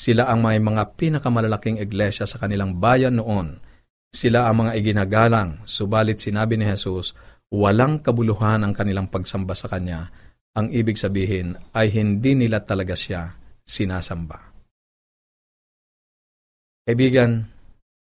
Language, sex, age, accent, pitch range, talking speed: Filipino, male, 50-69, native, 95-115 Hz, 115 wpm